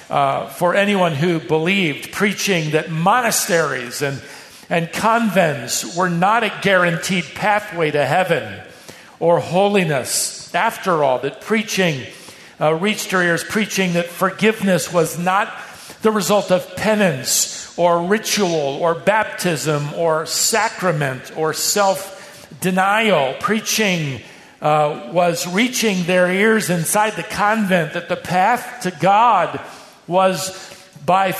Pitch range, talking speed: 170-210 Hz, 115 wpm